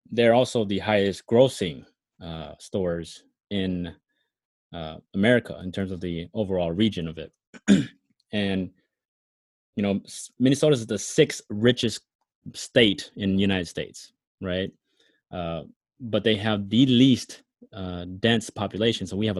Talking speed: 135 wpm